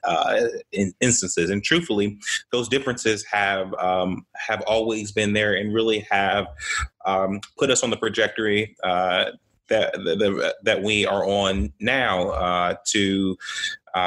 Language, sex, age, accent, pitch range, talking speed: English, male, 20-39, American, 95-115 Hz, 130 wpm